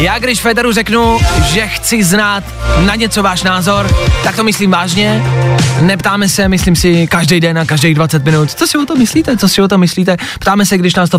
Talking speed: 215 wpm